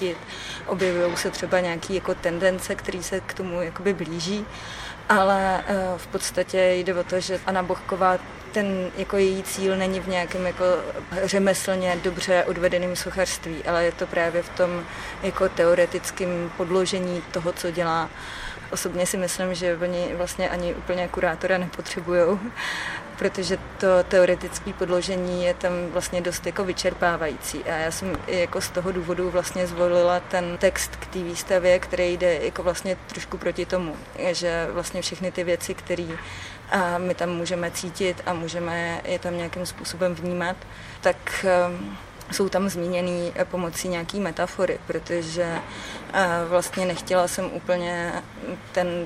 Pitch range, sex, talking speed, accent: 175-185 Hz, female, 140 wpm, native